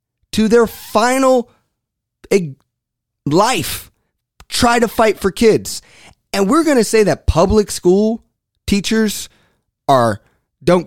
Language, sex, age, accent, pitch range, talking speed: English, male, 20-39, American, 125-185 Hz, 110 wpm